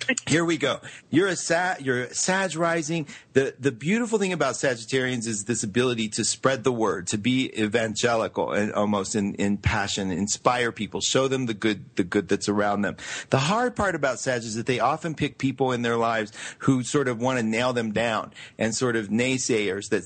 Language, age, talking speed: English, 40-59, 205 wpm